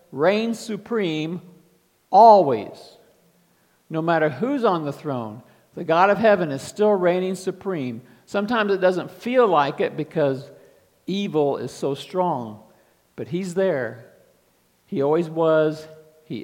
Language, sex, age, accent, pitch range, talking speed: English, male, 50-69, American, 120-180 Hz, 130 wpm